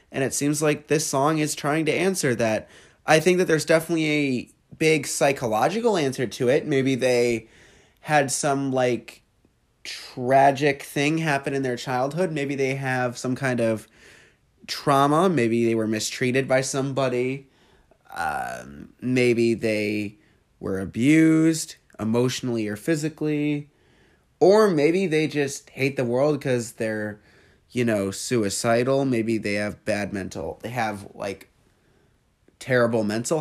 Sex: male